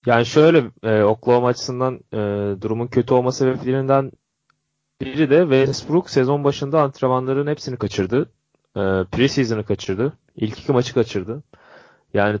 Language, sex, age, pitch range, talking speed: Turkish, male, 30-49, 105-145 Hz, 130 wpm